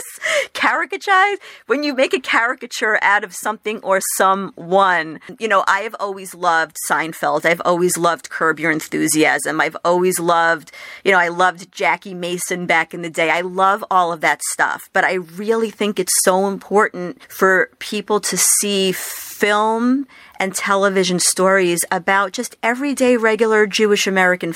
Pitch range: 175-215 Hz